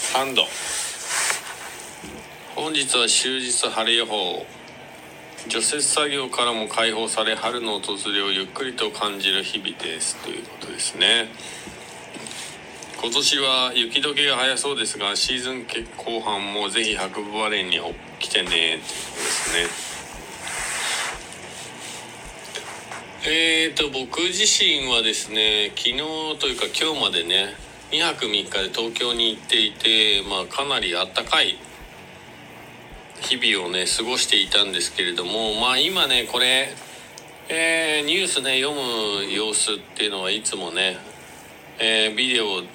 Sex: male